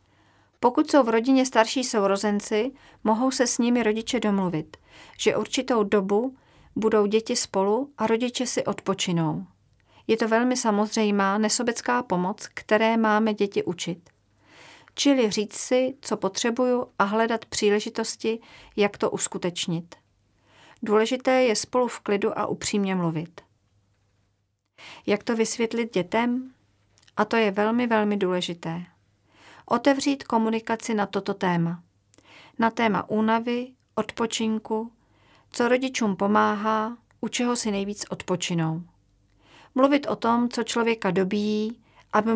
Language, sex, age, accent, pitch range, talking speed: Czech, female, 40-59, native, 180-235 Hz, 120 wpm